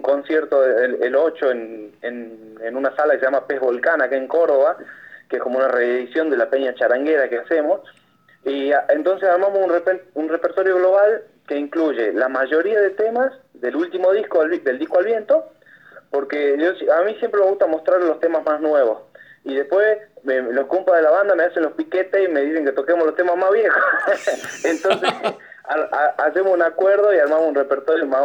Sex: male